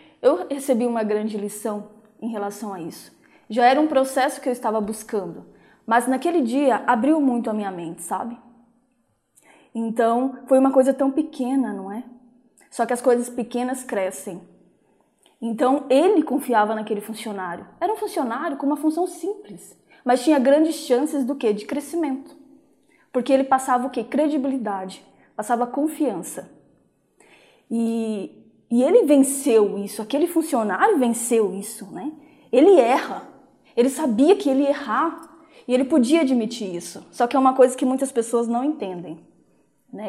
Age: 20-39